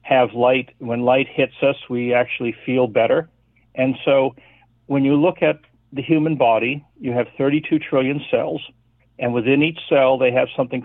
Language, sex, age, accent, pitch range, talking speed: English, male, 60-79, American, 115-135 Hz, 170 wpm